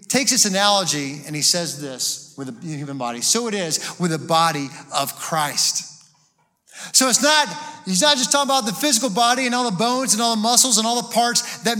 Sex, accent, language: male, American, English